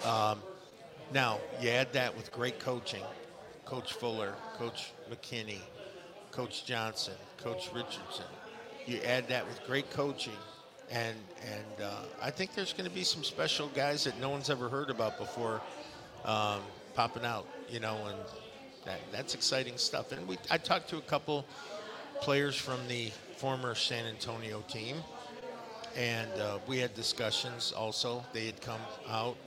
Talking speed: 155 wpm